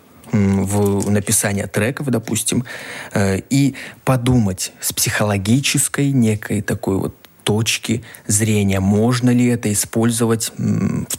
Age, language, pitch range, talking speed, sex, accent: 20-39, Russian, 105-125 Hz, 95 wpm, male, native